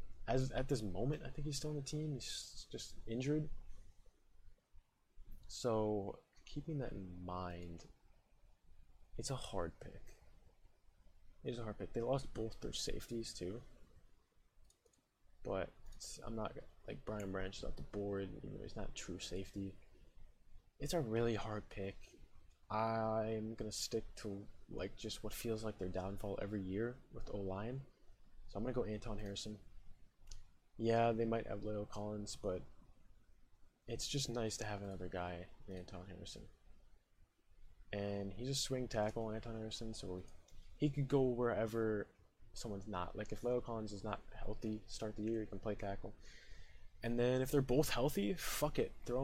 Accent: American